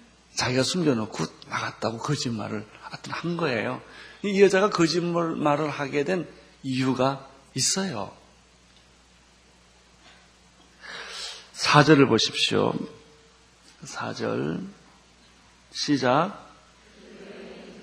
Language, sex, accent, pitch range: Korean, male, native, 120-175 Hz